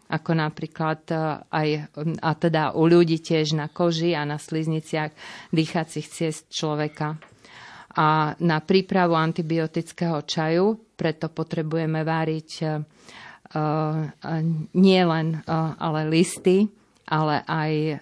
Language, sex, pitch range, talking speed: Slovak, female, 155-175 Hz, 105 wpm